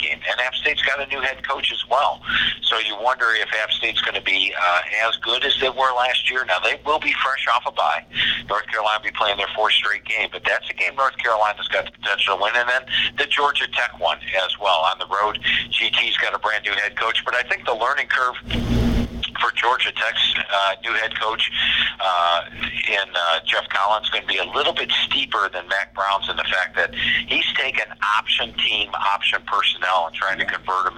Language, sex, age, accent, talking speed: English, male, 50-69, American, 225 wpm